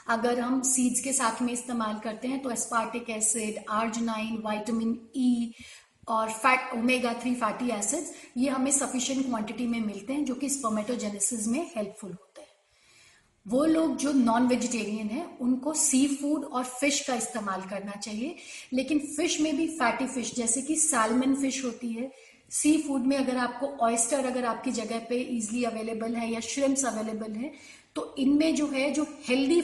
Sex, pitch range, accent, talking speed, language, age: female, 230-280 Hz, native, 175 wpm, Hindi, 30-49